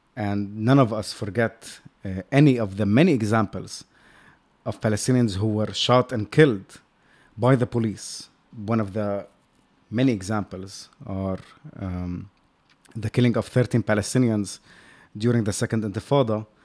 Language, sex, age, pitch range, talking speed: Arabic, male, 30-49, 105-125 Hz, 135 wpm